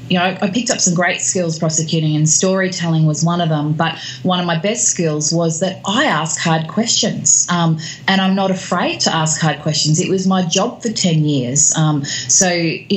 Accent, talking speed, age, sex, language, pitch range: Australian, 215 wpm, 30-49, female, English, 155-185 Hz